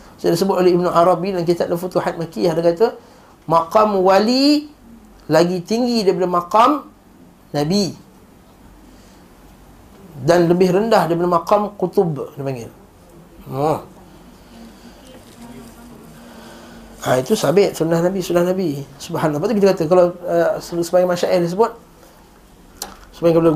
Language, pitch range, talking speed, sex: Malay, 155-195 Hz, 120 wpm, male